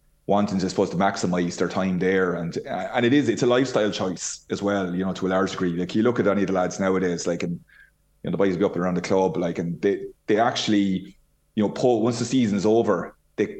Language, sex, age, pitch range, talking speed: English, male, 30-49, 90-105 Hz, 255 wpm